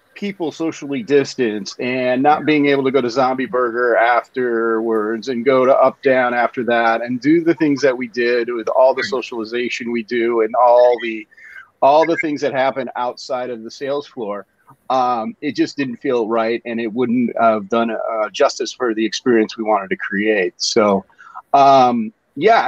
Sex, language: male, English